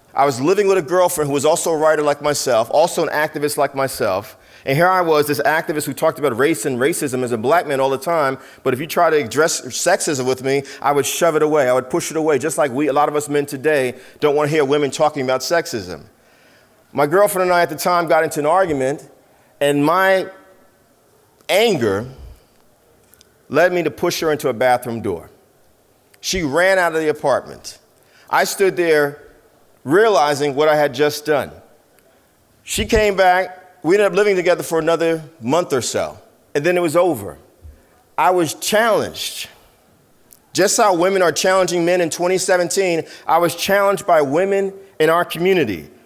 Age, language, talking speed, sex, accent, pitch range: 40-59, English, 195 wpm, male, American, 140-180 Hz